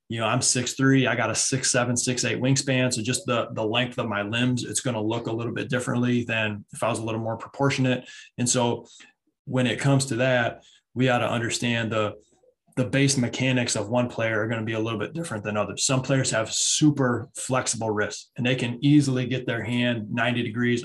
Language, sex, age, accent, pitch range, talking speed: English, male, 20-39, American, 115-130 Hz, 230 wpm